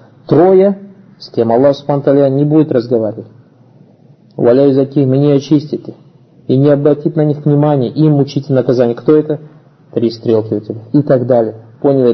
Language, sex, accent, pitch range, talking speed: Russian, male, native, 130-155 Hz, 160 wpm